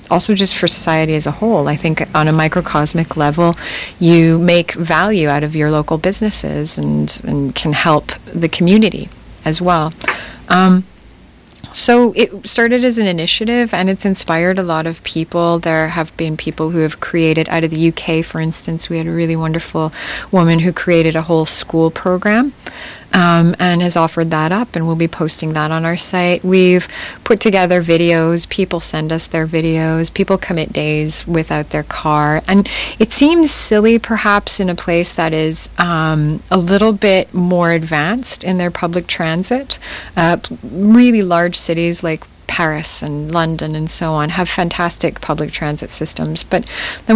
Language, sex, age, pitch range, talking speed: Portuguese, female, 30-49, 160-185 Hz, 170 wpm